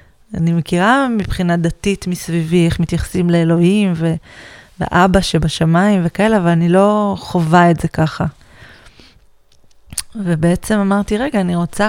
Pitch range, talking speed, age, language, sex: 170-190 Hz, 115 wpm, 20-39, Hebrew, female